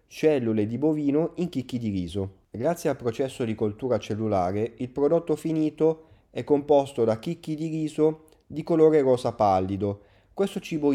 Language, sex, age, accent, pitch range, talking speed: Italian, male, 30-49, native, 105-140 Hz, 155 wpm